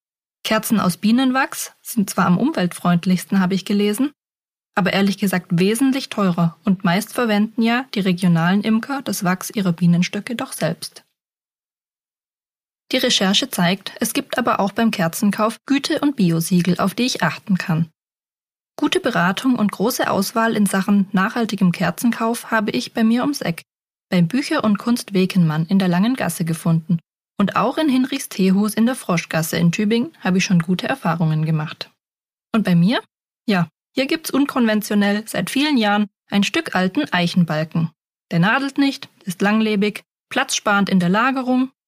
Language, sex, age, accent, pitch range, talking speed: German, female, 20-39, German, 180-235 Hz, 155 wpm